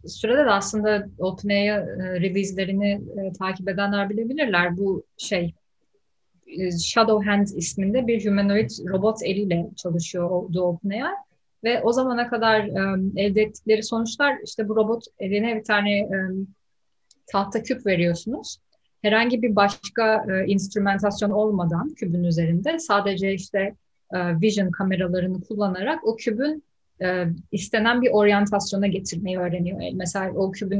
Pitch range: 185-225 Hz